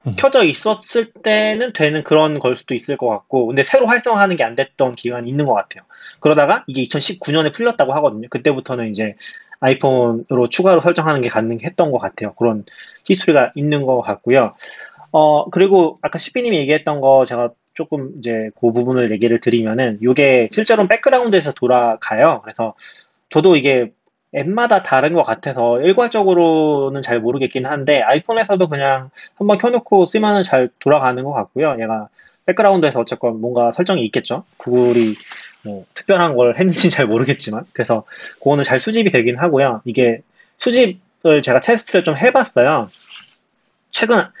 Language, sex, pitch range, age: Korean, male, 125-190 Hz, 20-39